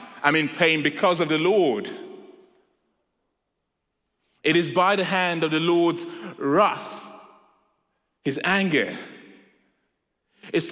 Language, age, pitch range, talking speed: English, 30-49, 155-220 Hz, 105 wpm